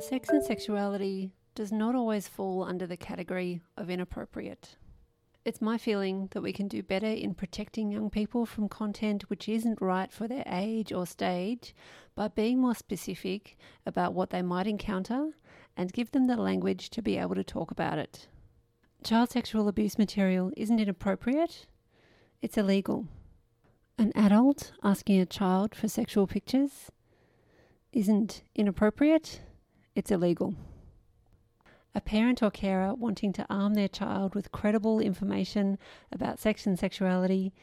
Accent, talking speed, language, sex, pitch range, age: Australian, 145 wpm, English, female, 185-220 Hz, 40-59